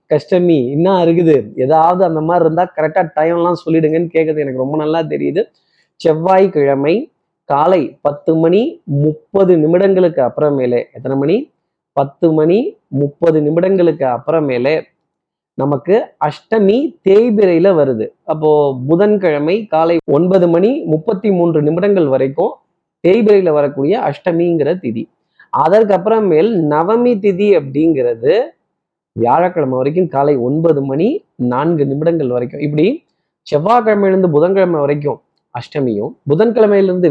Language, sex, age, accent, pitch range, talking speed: Tamil, male, 30-49, native, 150-190 Hz, 100 wpm